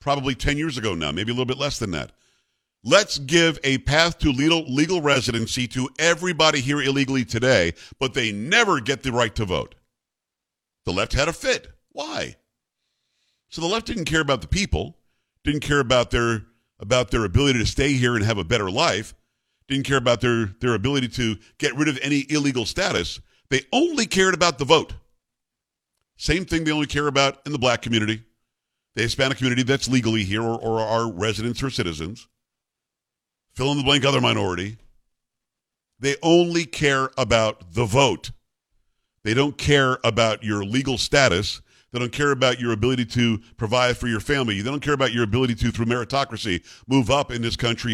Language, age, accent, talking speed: English, 50-69, American, 185 wpm